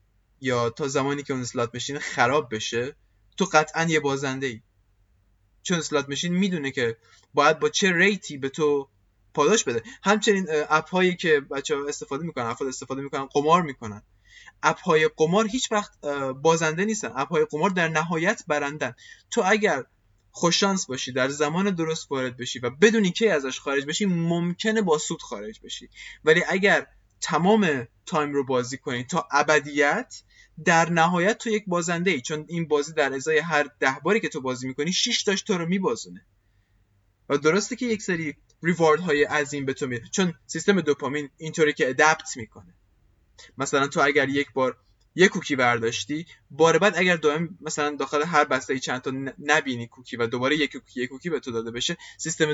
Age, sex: 20-39, male